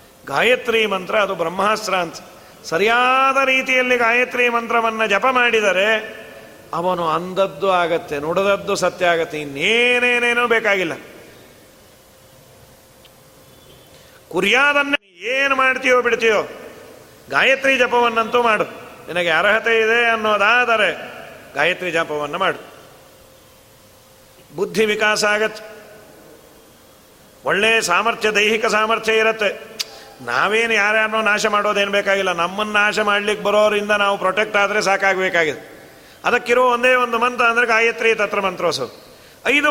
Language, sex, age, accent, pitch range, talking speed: Kannada, male, 40-59, native, 185-240 Hz, 95 wpm